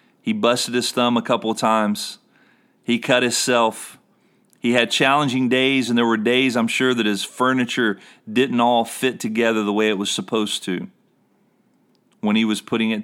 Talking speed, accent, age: 180 wpm, American, 40-59